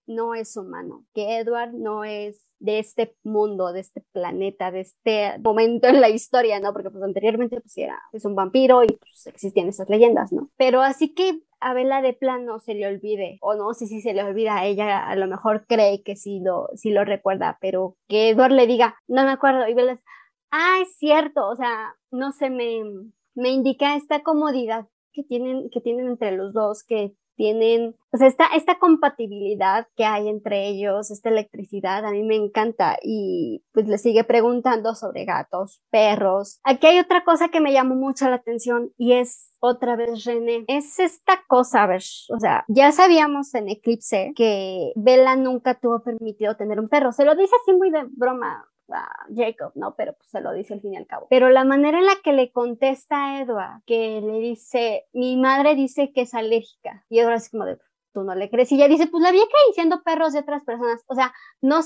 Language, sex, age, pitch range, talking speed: Spanish, male, 20-39, 210-265 Hz, 210 wpm